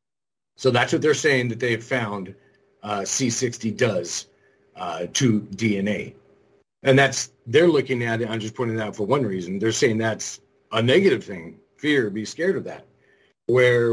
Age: 40-59